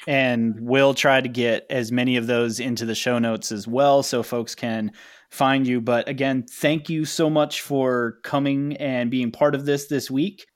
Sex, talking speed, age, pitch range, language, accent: male, 200 wpm, 30-49, 125-150 Hz, English, American